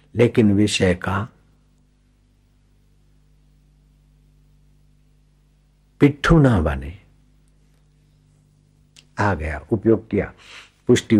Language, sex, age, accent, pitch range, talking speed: Hindi, male, 60-79, native, 95-135 Hz, 60 wpm